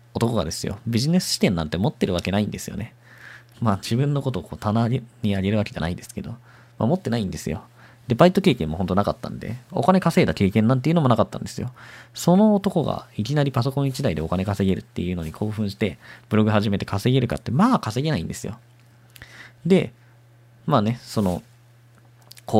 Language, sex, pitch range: Japanese, male, 100-135 Hz